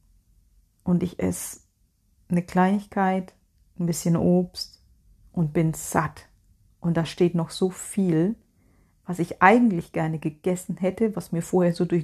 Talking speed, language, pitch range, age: 140 wpm, German, 155-190 Hz, 40-59